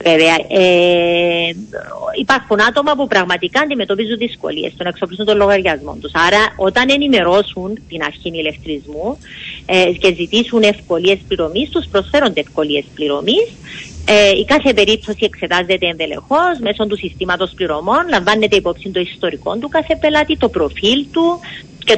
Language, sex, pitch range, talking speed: Greek, female, 180-255 Hz, 130 wpm